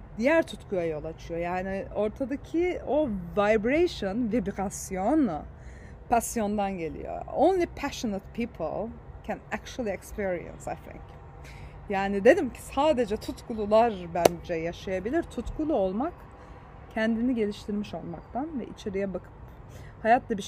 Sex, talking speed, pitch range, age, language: female, 105 wpm, 190-240 Hz, 30-49, Turkish